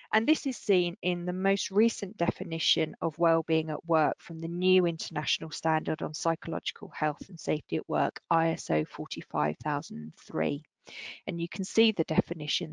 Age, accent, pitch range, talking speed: 40-59, British, 165-205 Hz, 155 wpm